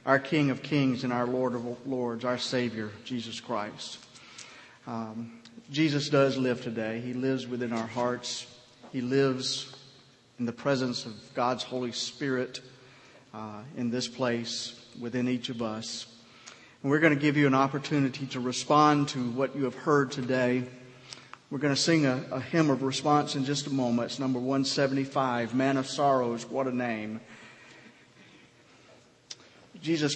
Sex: male